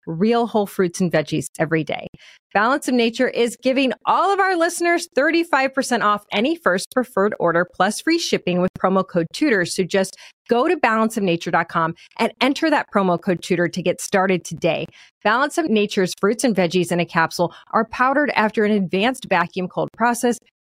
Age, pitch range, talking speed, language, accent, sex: 30-49, 180-250 Hz, 180 wpm, English, American, female